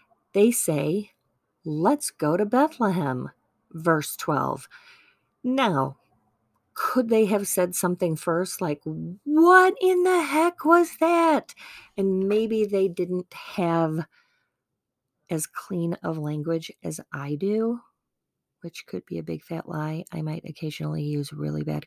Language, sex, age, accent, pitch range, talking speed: English, female, 40-59, American, 155-230 Hz, 130 wpm